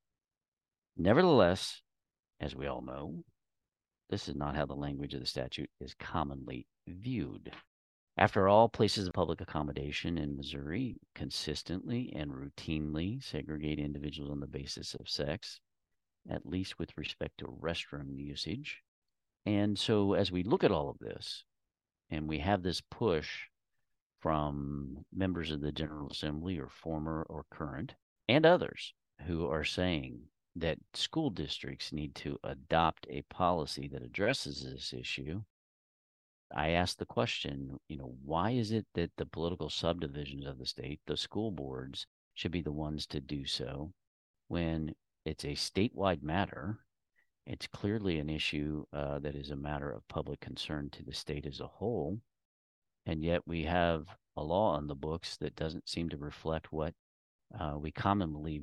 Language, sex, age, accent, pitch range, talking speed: English, male, 50-69, American, 70-90 Hz, 155 wpm